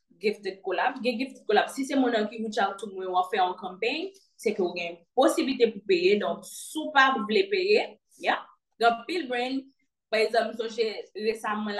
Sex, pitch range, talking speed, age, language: female, 195-255 Hz, 200 wpm, 20-39, French